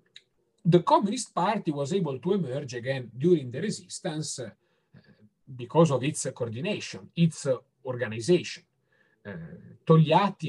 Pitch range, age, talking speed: 125-175 Hz, 40-59, 110 wpm